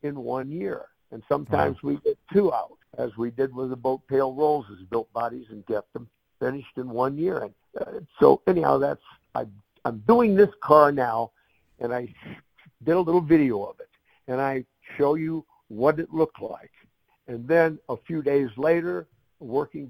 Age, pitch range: 60-79, 120-160 Hz